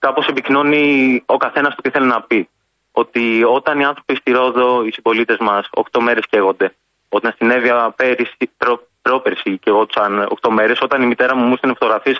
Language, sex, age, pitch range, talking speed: Greek, male, 20-39, 110-135 Hz, 180 wpm